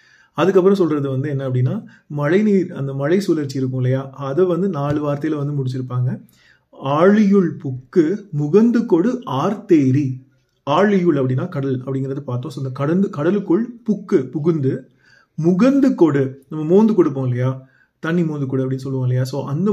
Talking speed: 135 wpm